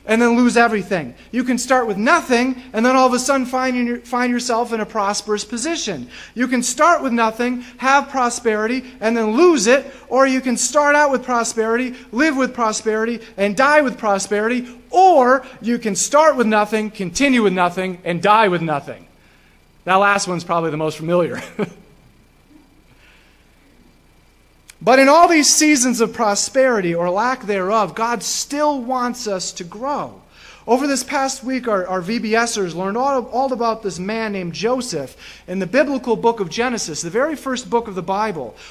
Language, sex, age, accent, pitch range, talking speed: English, male, 40-59, American, 200-260 Hz, 175 wpm